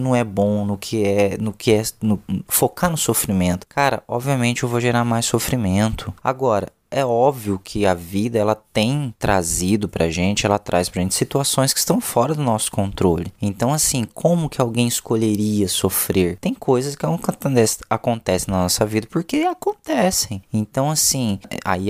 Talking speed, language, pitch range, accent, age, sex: 165 wpm, Portuguese, 100-140 Hz, Brazilian, 20-39, male